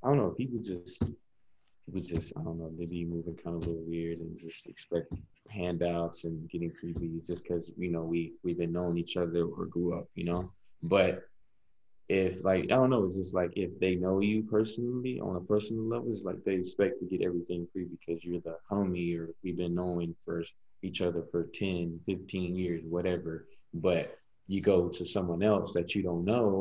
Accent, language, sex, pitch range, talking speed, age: American, English, male, 85-100 Hz, 210 wpm, 20-39